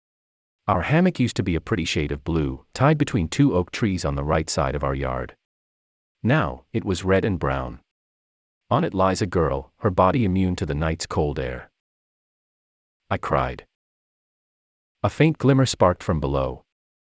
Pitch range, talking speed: 70-115 Hz, 170 wpm